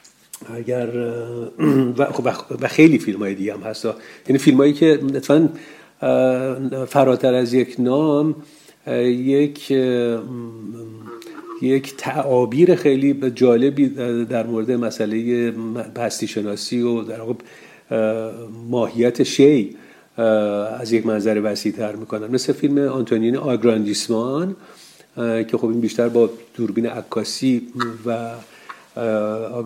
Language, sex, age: Persian, male, 50-69